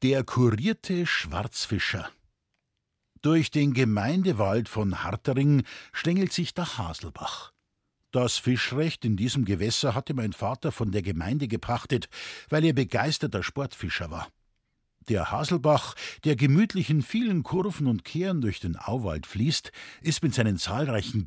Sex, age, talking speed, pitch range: male, 50-69, 130 wpm, 105-160 Hz